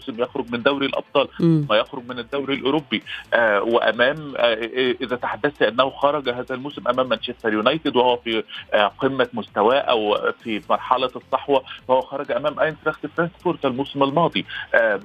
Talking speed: 150 wpm